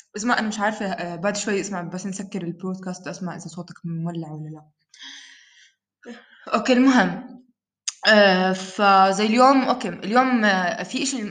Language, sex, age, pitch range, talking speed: English, female, 20-39, 185-270 Hz, 135 wpm